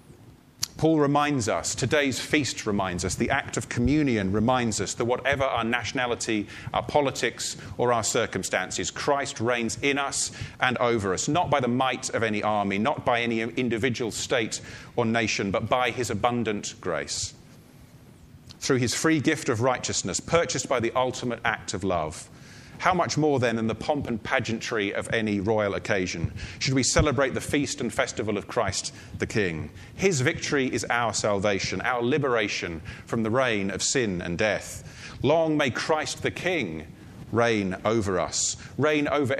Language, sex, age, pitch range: English, male, 30-49, 105-135 Hz